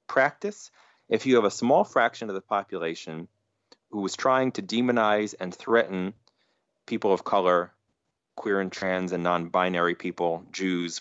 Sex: male